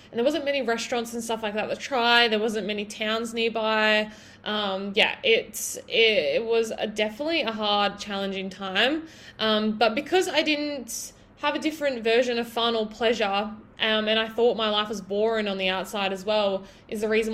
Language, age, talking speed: English, 10-29, 195 wpm